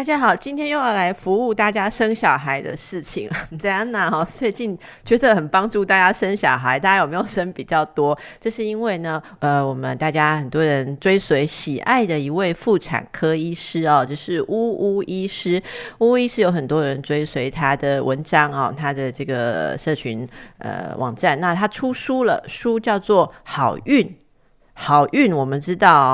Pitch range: 140-195 Hz